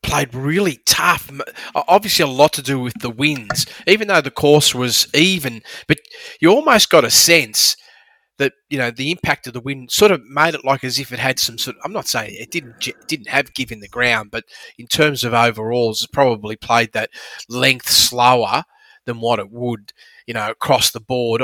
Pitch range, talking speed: 120-150 Hz, 205 wpm